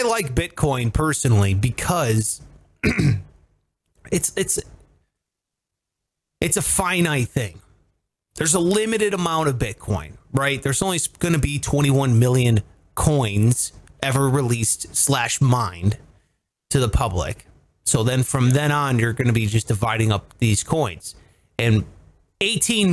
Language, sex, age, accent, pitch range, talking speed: English, male, 30-49, American, 115-160 Hz, 130 wpm